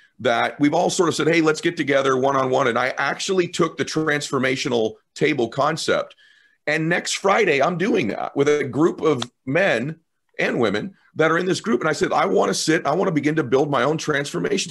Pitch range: 135-180 Hz